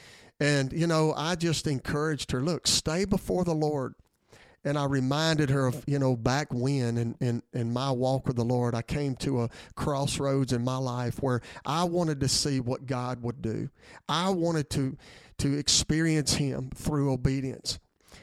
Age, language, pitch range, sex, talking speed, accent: 40-59, English, 130-160 Hz, male, 180 wpm, American